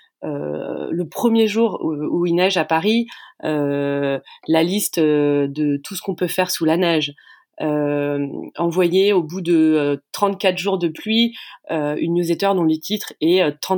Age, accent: 30-49, French